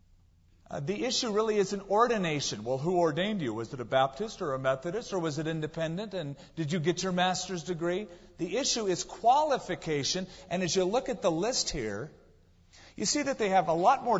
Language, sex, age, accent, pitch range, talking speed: English, male, 40-59, American, 115-185 Hz, 205 wpm